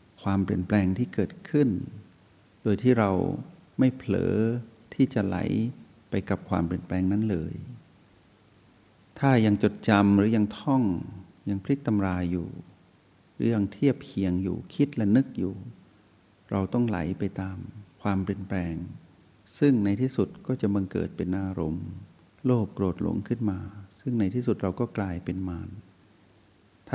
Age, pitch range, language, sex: 60-79, 95-115 Hz, Thai, male